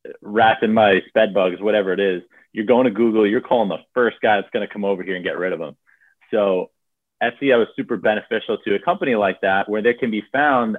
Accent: American